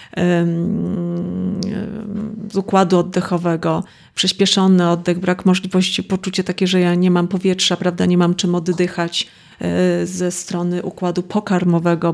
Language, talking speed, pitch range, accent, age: Polish, 115 wpm, 175-195 Hz, native, 30-49